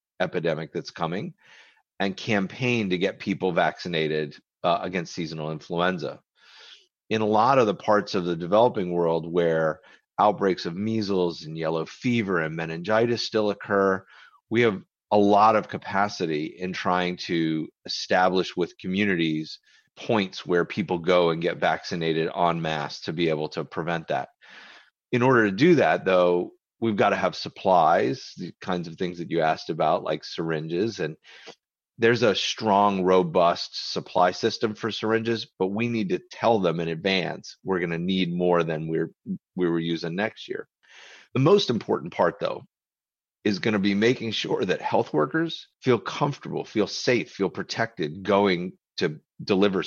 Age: 30-49